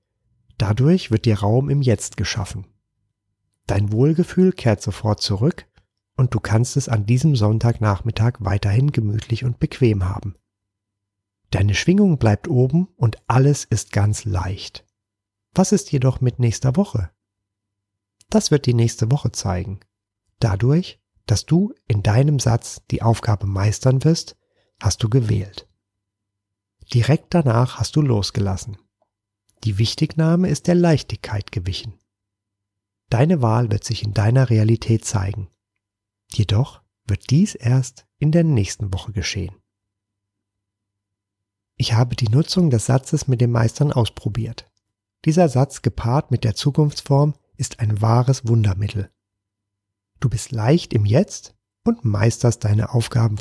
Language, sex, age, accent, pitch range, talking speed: German, male, 40-59, German, 100-130 Hz, 130 wpm